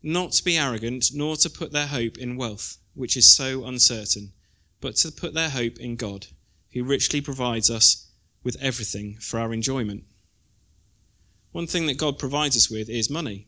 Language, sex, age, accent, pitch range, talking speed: English, male, 20-39, British, 100-135 Hz, 180 wpm